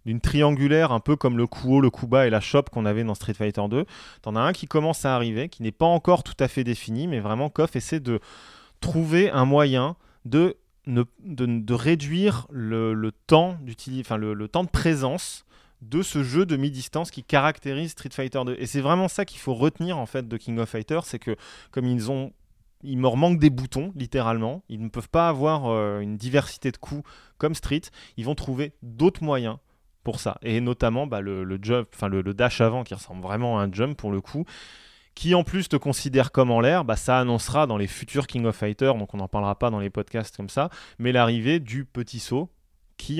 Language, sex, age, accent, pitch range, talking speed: French, male, 20-39, French, 115-145 Hz, 225 wpm